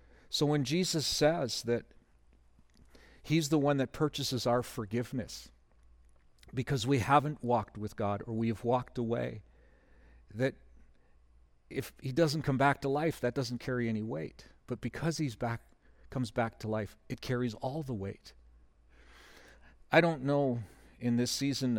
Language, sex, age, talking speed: English, male, 50-69, 150 wpm